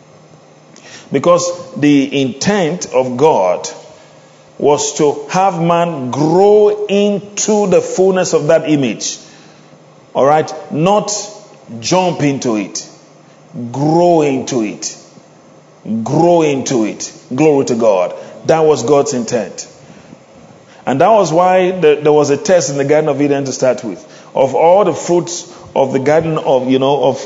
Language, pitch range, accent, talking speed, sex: English, 145-185 Hz, Nigerian, 135 wpm, male